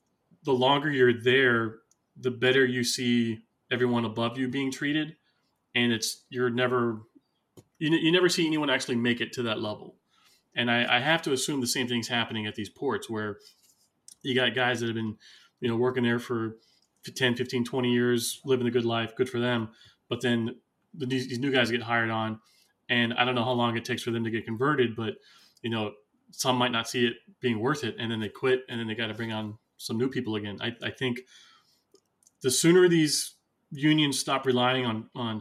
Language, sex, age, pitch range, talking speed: English, male, 20-39, 115-130 Hz, 210 wpm